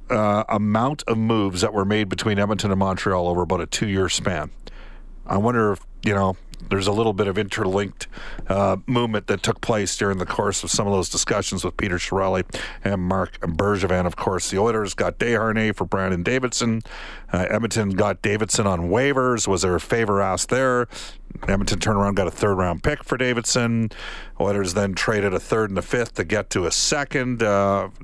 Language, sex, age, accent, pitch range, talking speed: English, male, 50-69, American, 95-115 Hz, 195 wpm